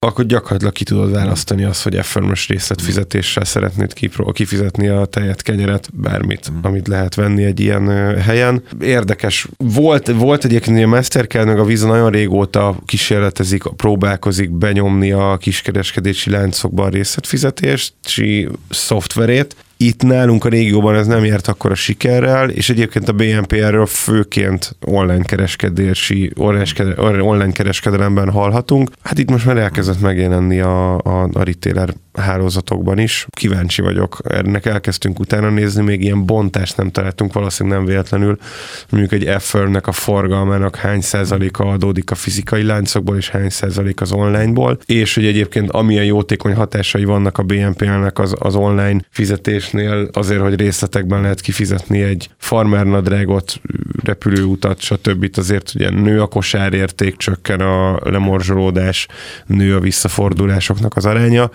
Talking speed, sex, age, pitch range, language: 135 wpm, male, 30-49, 95-110 Hz, Hungarian